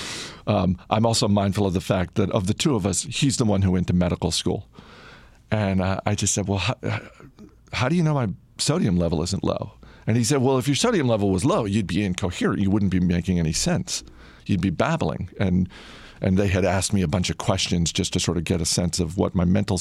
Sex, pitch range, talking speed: male, 90-110 Hz, 240 wpm